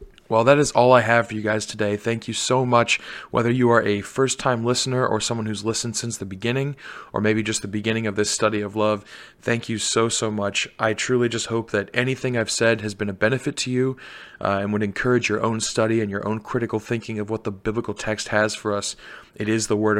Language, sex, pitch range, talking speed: English, male, 105-120 Hz, 240 wpm